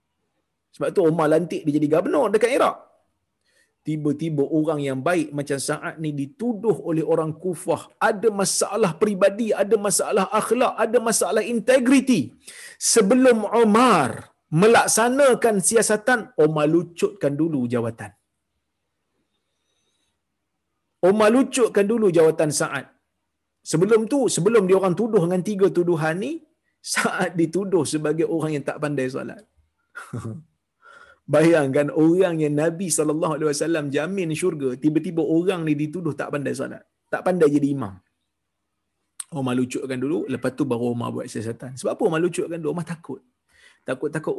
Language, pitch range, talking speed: Malayalam, 145-200 Hz, 135 wpm